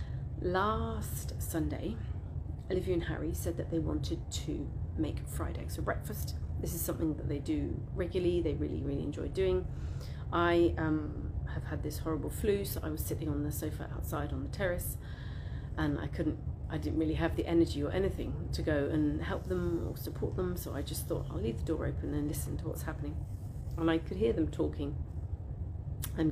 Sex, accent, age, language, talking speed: female, British, 40-59, English, 195 wpm